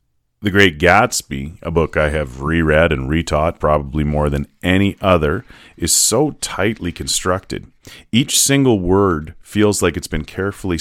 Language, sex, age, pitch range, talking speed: English, male, 30-49, 80-100 Hz, 150 wpm